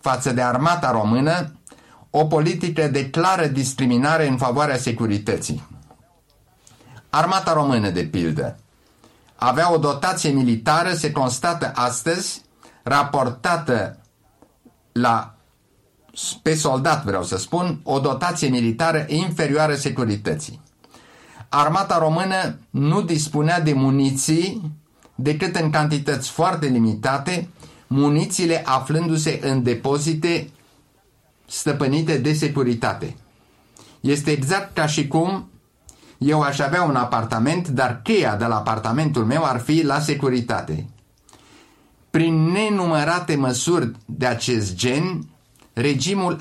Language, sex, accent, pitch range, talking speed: Romanian, male, native, 125-160 Hz, 105 wpm